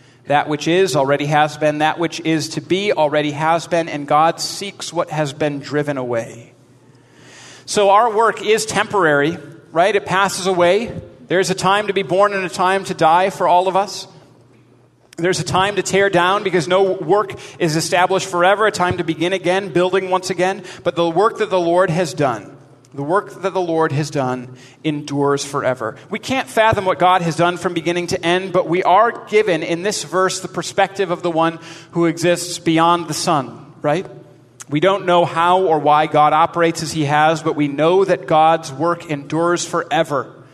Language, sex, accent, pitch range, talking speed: English, male, American, 150-185 Hz, 195 wpm